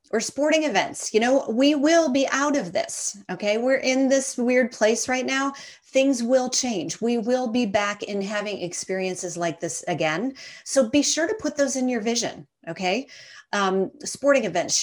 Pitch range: 185-260 Hz